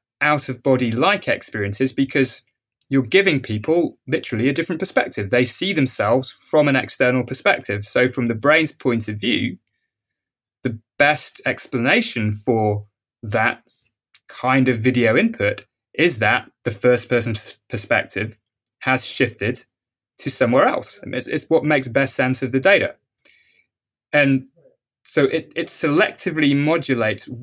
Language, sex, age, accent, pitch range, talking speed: English, male, 20-39, British, 110-135 Hz, 130 wpm